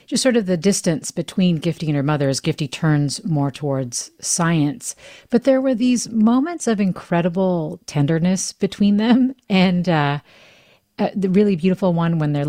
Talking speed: 170 wpm